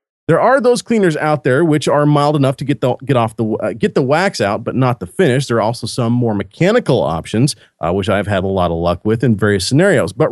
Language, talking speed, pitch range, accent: English, 260 wpm, 100-140 Hz, American